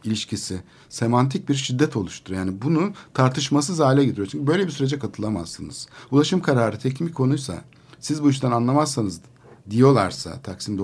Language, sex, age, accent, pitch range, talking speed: Turkish, male, 60-79, native, 115-145 Hz, 145 wpm